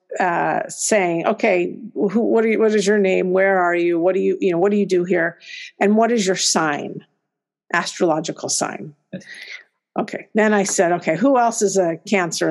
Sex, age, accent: female, 50-69, American